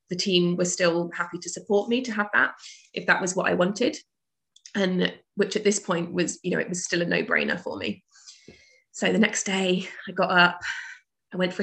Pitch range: 180-205 Hz